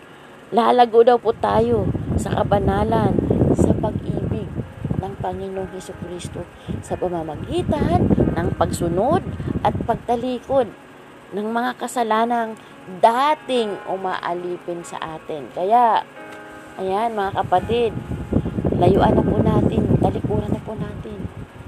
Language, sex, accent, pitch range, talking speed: Filipino, female, native, 195-250 Hz, 100 wpm